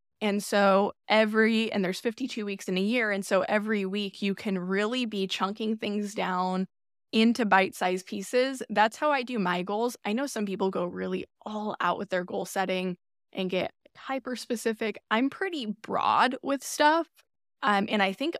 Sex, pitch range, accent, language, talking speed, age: female, 190-235 Hz, American, English, 175 wpm, 10-29